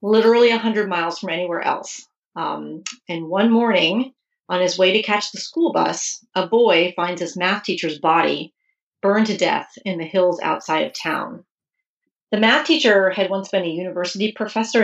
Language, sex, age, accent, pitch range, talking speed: English, female, 40-59, American, 175-215 Hz, 175 wpm